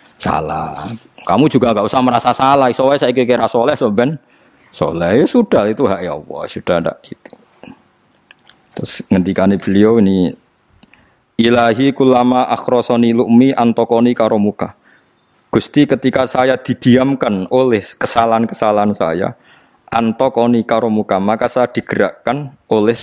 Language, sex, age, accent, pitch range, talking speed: Indonesian, male, 20-39, native, 100-120 Hz, 105 wpm